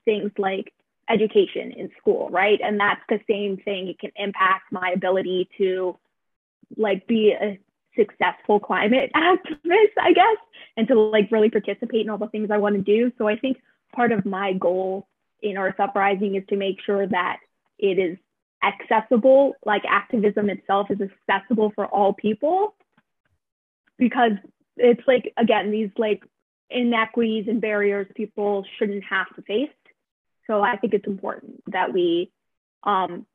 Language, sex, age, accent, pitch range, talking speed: Italian, female, 20-39, American, 195-230 Hz, 155 wpm